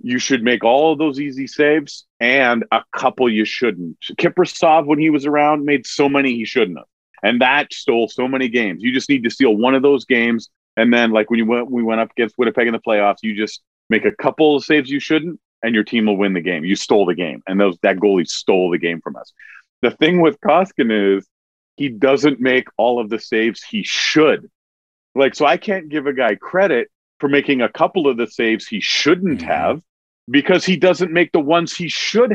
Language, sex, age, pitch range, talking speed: English, male, 40-59, 115-160 Hz, 225 wpm